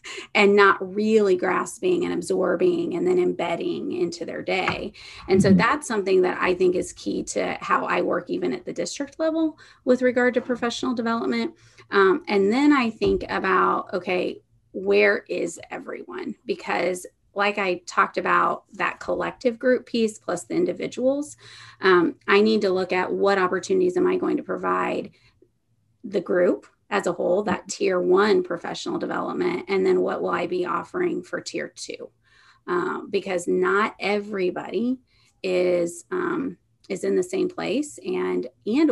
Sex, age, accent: female, 30-49, American